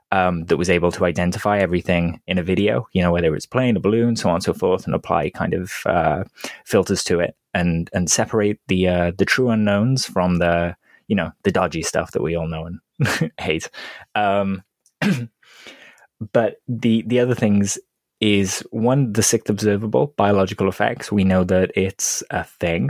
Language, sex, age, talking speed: English, male, 20-39, 185 wpm